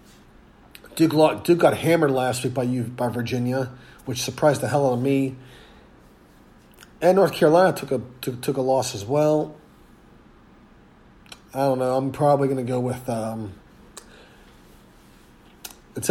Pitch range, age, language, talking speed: 125-155 Hz, 30-49, English, 125 wpm